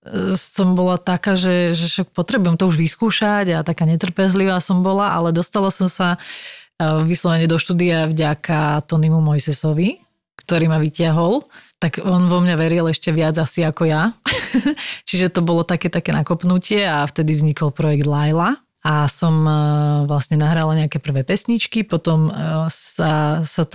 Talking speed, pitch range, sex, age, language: 145 wpm, 155-180 Hz, female, 30-49, Slovak